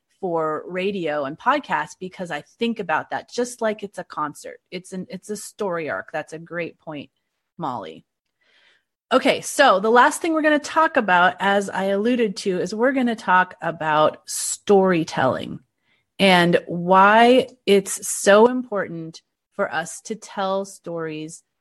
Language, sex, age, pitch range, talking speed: English, female, 30-49, 185-255 Hz, 155 wpm